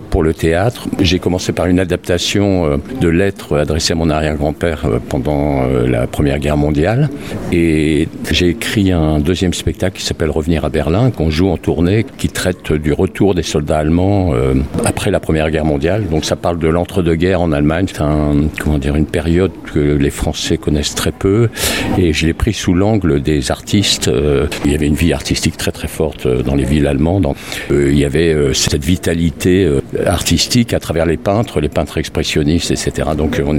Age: 60-79